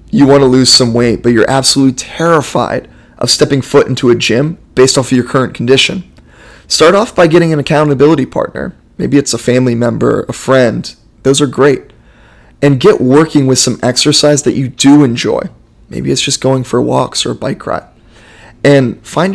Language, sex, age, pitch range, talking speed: English, male, 20-39, 120-145 Hz, 190 wpm